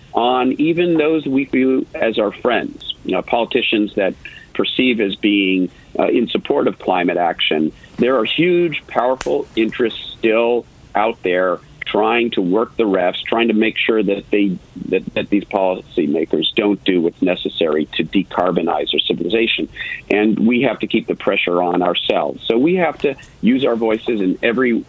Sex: male